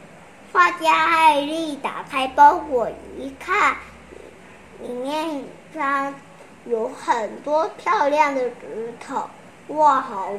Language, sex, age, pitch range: Chinese, male, 20-39, 265-315 Hz